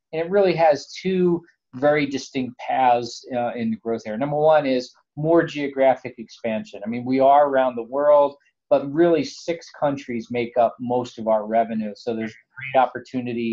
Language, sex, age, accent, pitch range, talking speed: English, male, 40-59, American, 120-145 Hz, 180 wpm